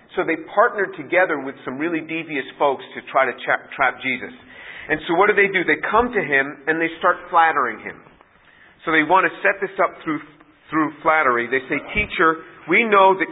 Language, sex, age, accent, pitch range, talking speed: English, male, 50-69, American, 140-190 Hz, 205 wpm